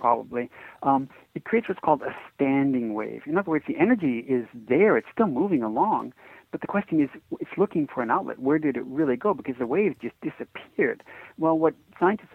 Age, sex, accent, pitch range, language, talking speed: 60-79, male, American, 125-200 Hz, English, 205 wpm